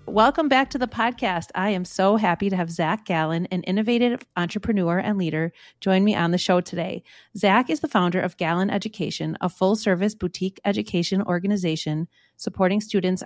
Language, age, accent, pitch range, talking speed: English, 30-49, American, 170-205 Hz, 175 wpm